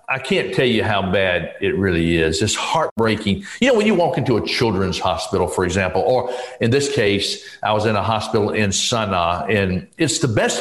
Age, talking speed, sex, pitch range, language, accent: 50-69, 210 wpm, male, 100-130 Hz, English, American